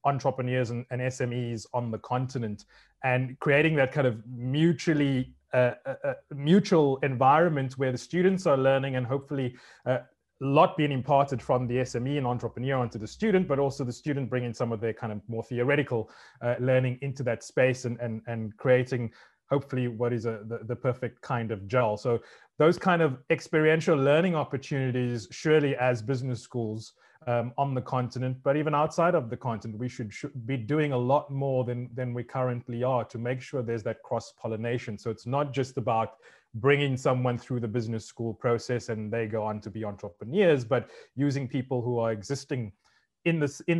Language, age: English, 20-39